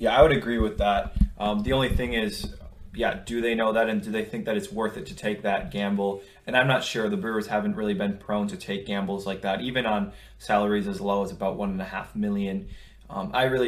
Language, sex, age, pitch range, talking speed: English, male, 20-39, 100-125 Hz, 235 wpm